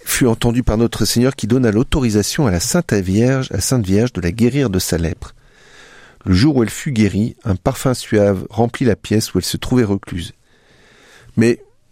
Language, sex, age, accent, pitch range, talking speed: French, male, 40-59, French, 100-120 Hz, 195 wpm